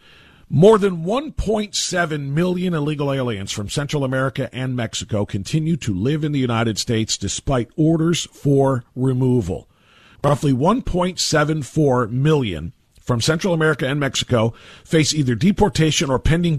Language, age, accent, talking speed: English, 50-69, American, 125 wpm